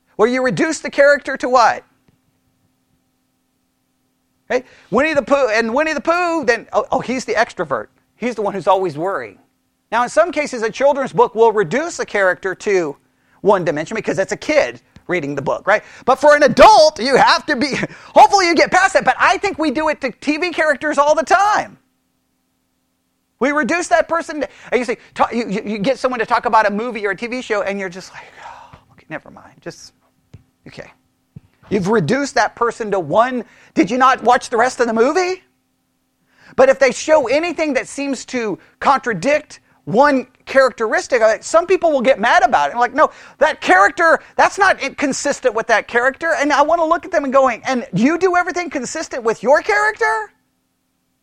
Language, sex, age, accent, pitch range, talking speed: English, male, 40-59, American, 235-325 Hz, 190 wpm